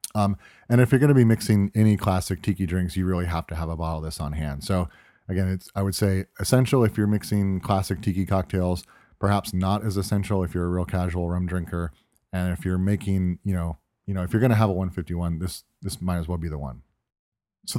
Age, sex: 30-49, male